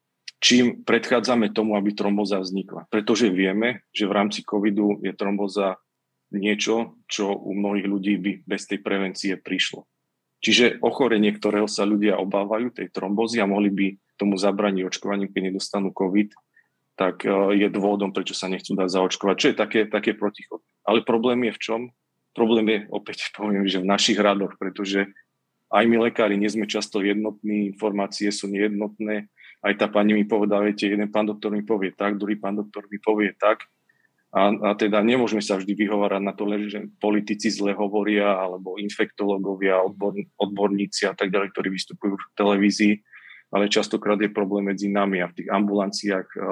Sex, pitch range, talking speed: male, 100-105 Hz, 165 wpm